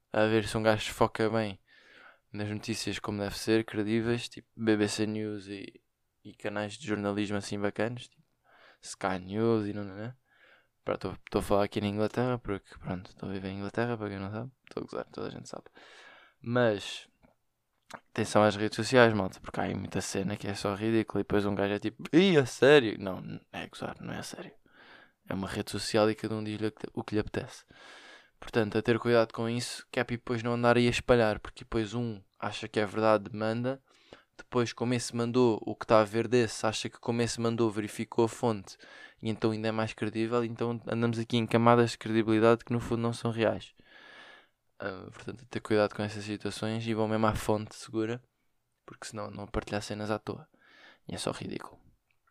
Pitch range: 105-120 Hz